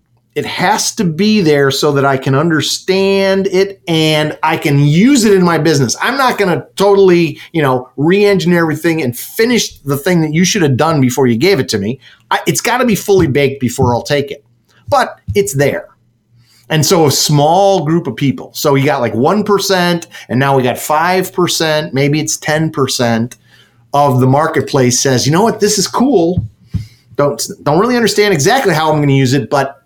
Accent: American